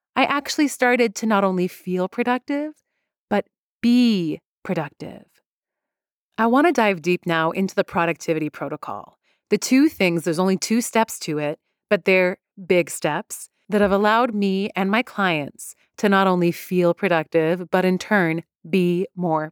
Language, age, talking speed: English, 30-49, 155 wpm